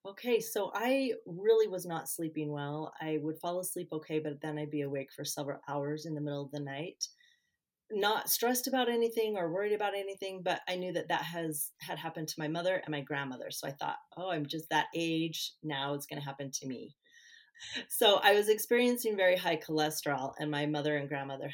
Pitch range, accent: 145-180 Hz, American